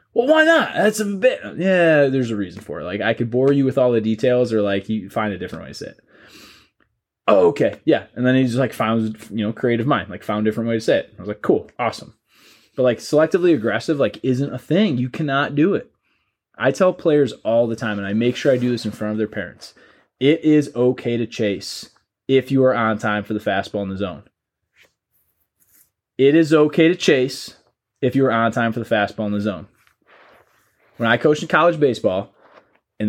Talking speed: 225 wpm